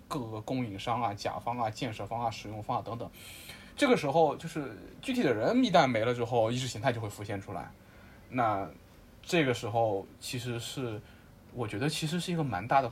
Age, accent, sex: 20-39, native, male